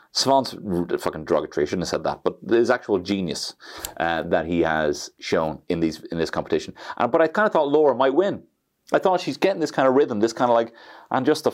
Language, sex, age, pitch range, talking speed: English, male, 30-49, 90-145 Hz, 250 wpm